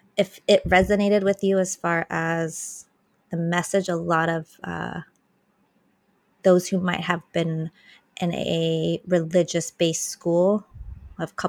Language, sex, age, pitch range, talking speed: English, female, 20-39, 160-180 Hz, 125 wpm